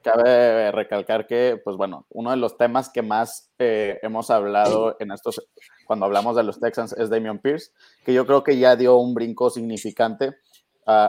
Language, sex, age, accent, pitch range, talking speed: Spanish, male, 30-49, Mexican, 110-125 Hz, 185 wpm